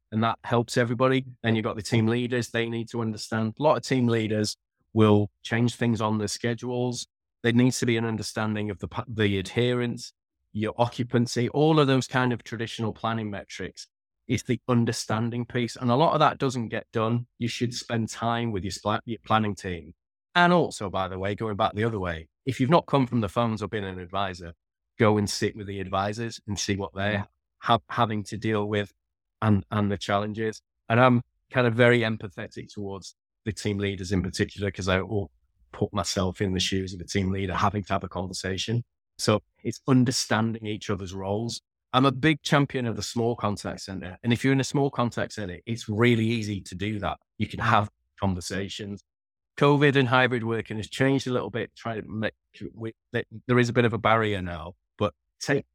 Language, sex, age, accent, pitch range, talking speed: English, male, 20-39, British, 100-120 Hz, 205 wpm